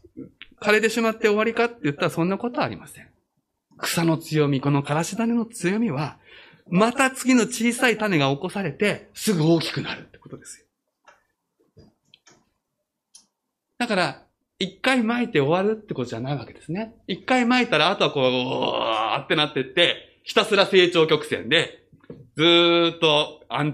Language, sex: Japanese, male